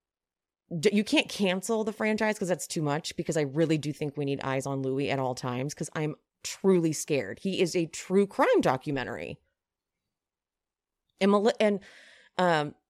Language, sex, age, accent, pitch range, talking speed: English, female, 30-49, American, 145-190 Hz, 165 wpm